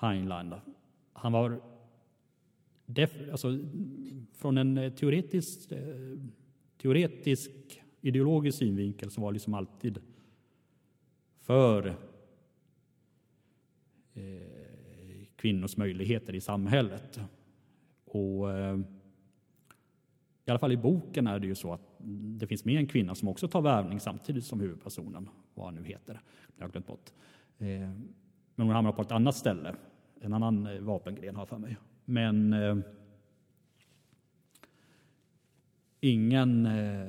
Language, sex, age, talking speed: Swedish, male, 40-59, 110 wpm